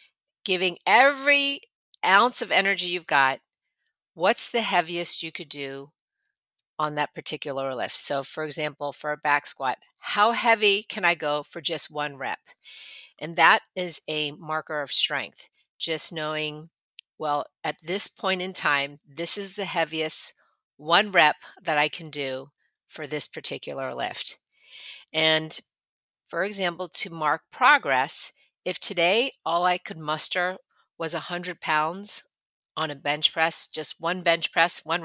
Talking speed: 150 wpm